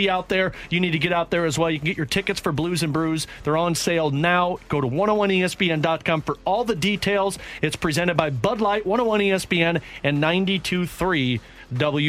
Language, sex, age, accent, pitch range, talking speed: English, male, 40-59, American, 145-195 Hz, 195 wpm